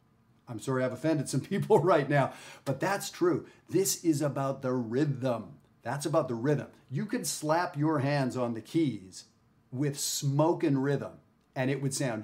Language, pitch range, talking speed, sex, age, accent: English, 115-150 Hz, 175 wpm, male, 40-59, American